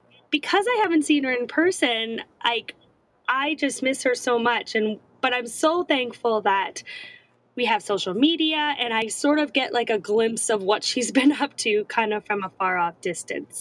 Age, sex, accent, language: 10-29, female, American, English